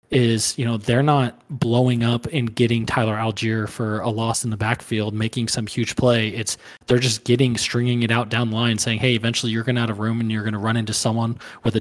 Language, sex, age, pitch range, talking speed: English, male, 20-39, 110-120 Hz, 250 wpm